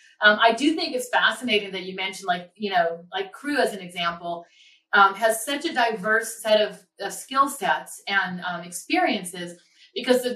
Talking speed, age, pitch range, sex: 185 wpm, 30-49, 185-230 Hz, female